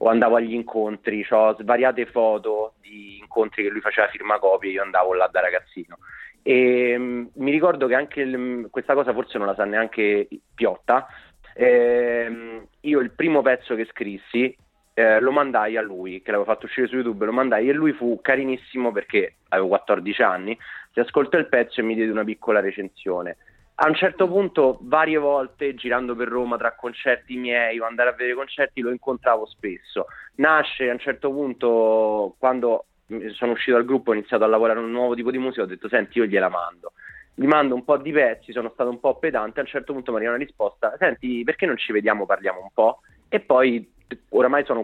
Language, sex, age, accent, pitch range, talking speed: Italian, male, 30-49, native, 110-130 Hz, 200 wpm